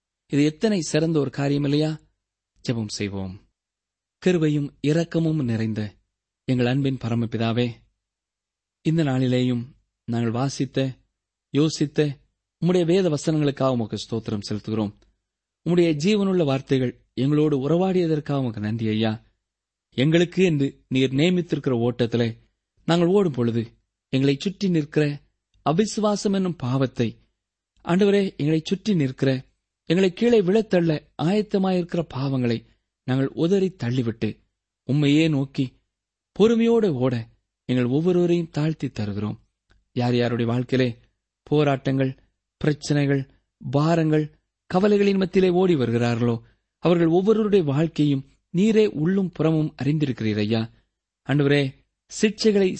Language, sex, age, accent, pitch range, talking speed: Tamil, male, 20-39, native, 115-165 Hz, 100 wpm